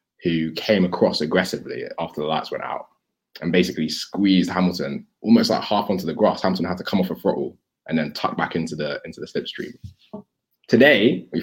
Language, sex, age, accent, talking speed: English, male, 20-39, British, 190 wpm